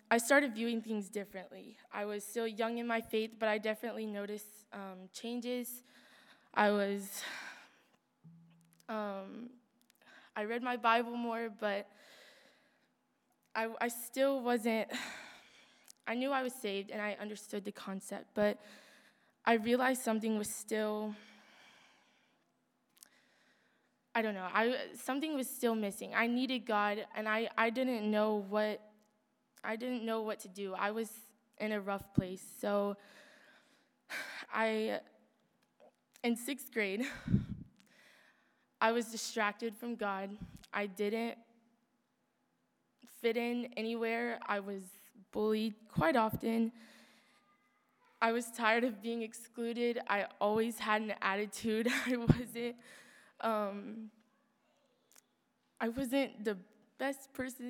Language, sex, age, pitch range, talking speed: English, female, 20-39, 210-240 Hz, 120 wpm